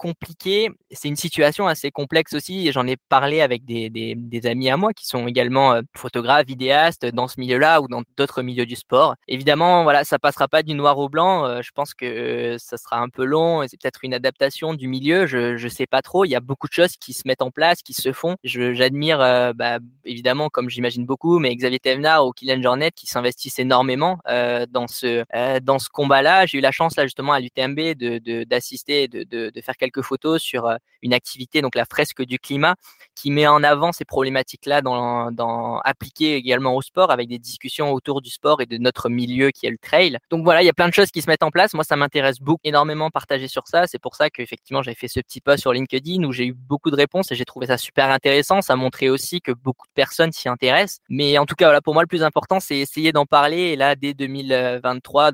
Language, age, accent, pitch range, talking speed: French, 20-39, French, 125-150 Hz, 245 wpm